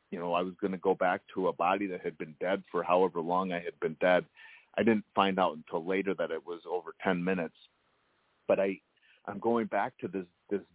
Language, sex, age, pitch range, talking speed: English, male, 40-59, 90-105 Hz, 235 wpm